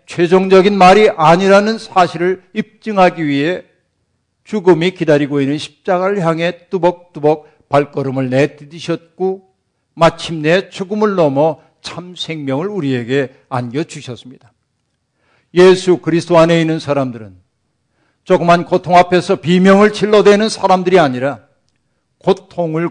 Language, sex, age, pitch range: Korean, male, 50-69, 140-185 Hz